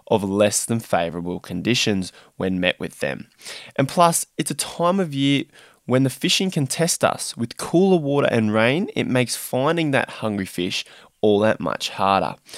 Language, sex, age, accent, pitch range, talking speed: English, male, 20-39, Australian, 105-140 Hz, 175 wpm